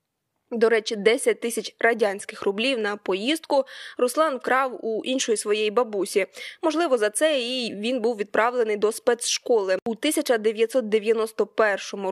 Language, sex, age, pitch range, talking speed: Ukrainian, female, 20-39, 215-275 Hz, 125 wpm